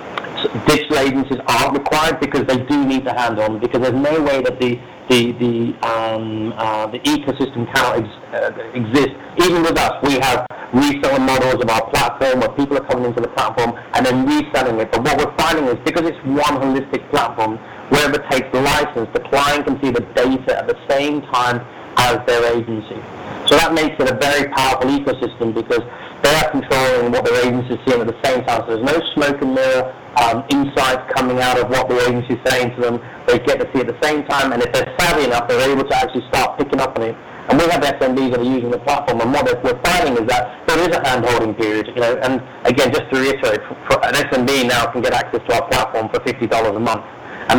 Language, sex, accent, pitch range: English, male, British, 120-140 Hz